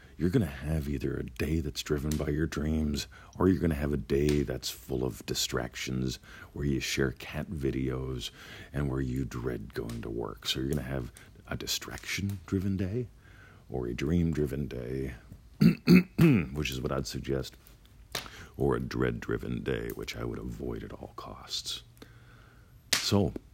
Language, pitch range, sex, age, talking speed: English, 65-80 Hz, male, 50-69, 165 wpm